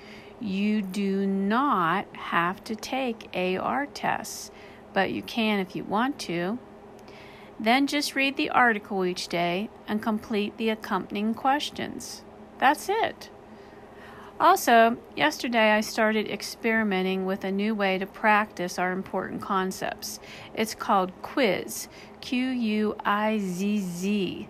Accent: American